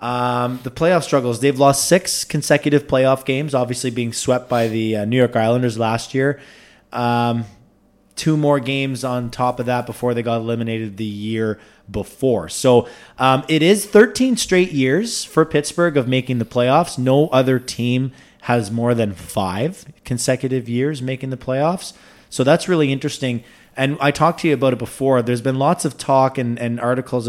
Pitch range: 115-140 Hz